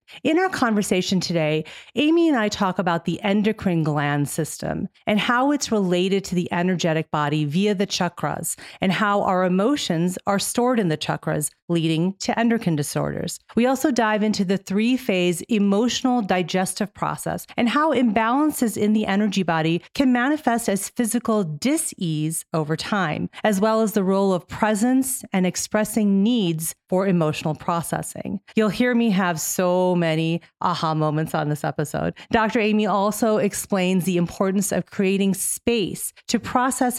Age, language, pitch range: 40-59, English, 175-220 Hz